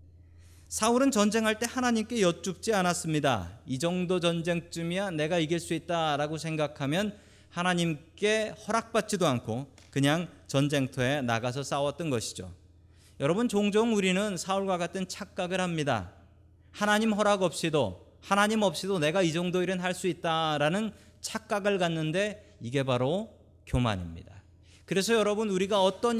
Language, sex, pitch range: Korean, male, 125-190 Hz